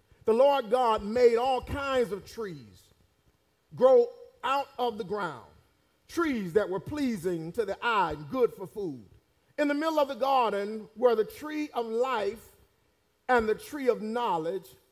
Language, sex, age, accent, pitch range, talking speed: English, male, 40-59, American, 230-300 Hz, 160 wpm